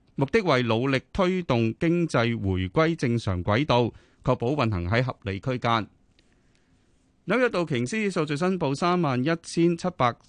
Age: 30-49